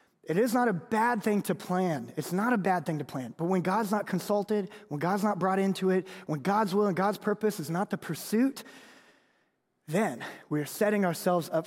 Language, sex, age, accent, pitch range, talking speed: English, male, 20-39, American, 175-220 Hz, 215 wpm